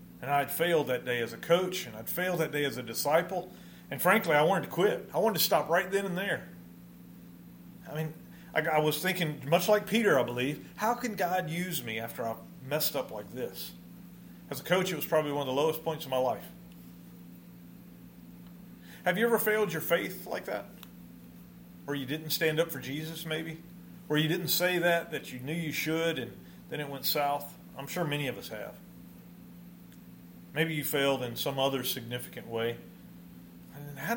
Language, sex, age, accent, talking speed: English, male, 40-59, American, 195 wpm